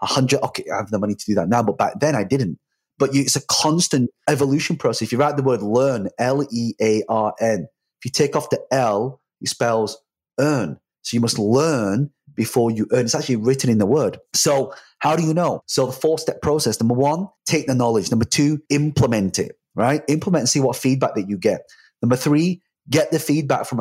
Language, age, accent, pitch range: English, 30-49, British, 125-155 Hz